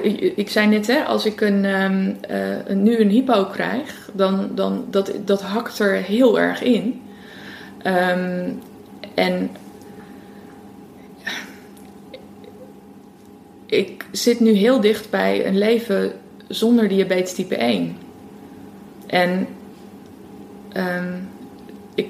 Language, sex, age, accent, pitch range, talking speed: Dutch, female, 20-39, Dutch, 190-225 Hz, 90 wpm